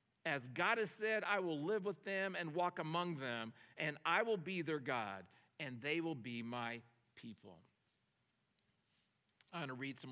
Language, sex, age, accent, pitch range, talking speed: English, male, 50-69, American, 125-160 Hz, 180 wpm